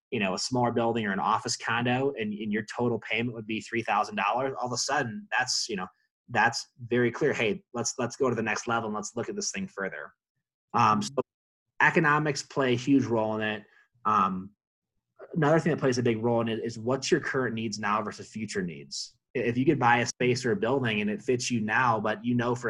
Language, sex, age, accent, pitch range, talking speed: English, male, 20-39, American, 105-125 Hz, 235 wpm